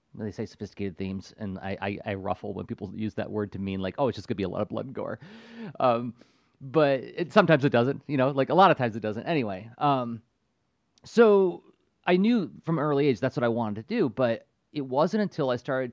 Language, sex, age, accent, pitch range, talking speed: English, male, 30-49, American, 105-145 Hz, 240 wpm